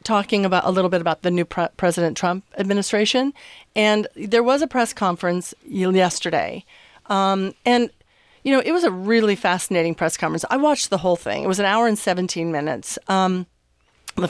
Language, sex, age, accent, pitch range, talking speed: English, female, 40-59, American, 175-210 Hz, 185 wpm